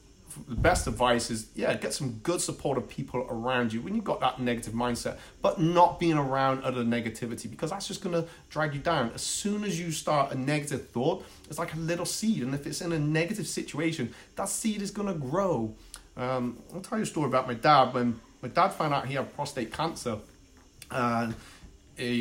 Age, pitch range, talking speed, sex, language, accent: 30-49, 115-150 Hz, 210 wpm, male, English, British